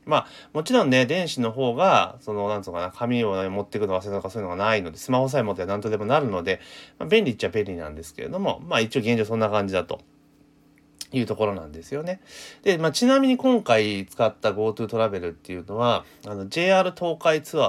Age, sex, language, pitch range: 30-49, male, Japanese, 100-165 Hz